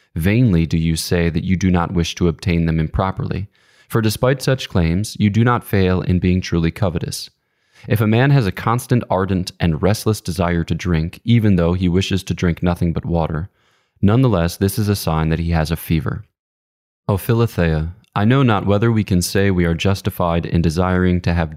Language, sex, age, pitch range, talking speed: English, male, 20-39, 85-110 Hz, 200 wpm